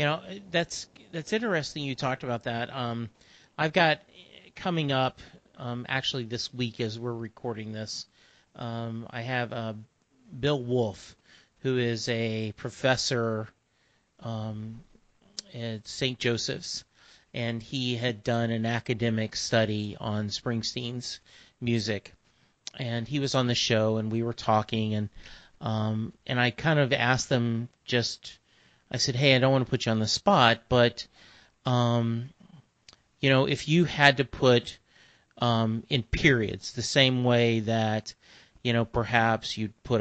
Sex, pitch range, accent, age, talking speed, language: male, 115-135 Hz, American, 40-59, 145 wpm, English